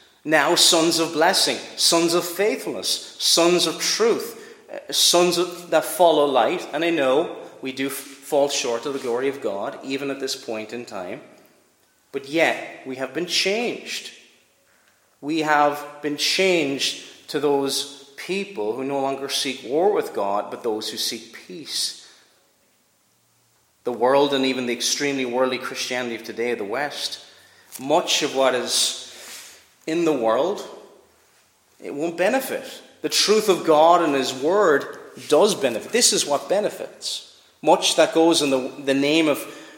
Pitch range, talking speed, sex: 120-170 Hz, 150 wpm, male